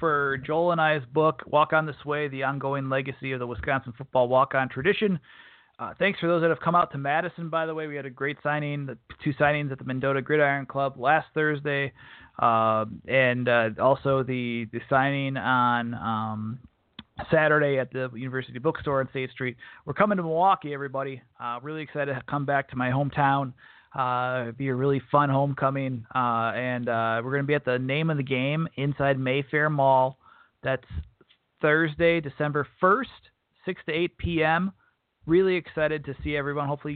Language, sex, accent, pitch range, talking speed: English, male, American, 120-150 Hz, 185 wpm